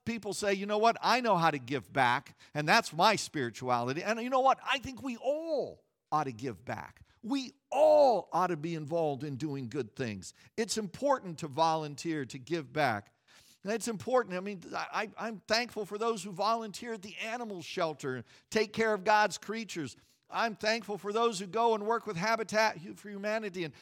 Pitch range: 150-225 Hz